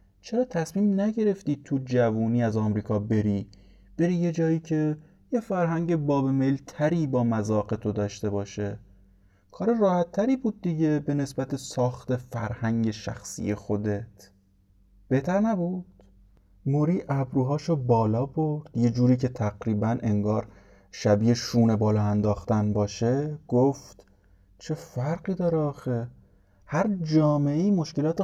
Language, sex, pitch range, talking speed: Persian, male, 105-160 Hz, 120 wpm